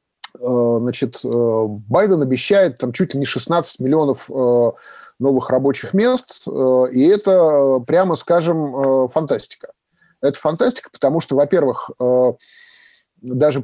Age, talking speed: 20-39, 100 wpm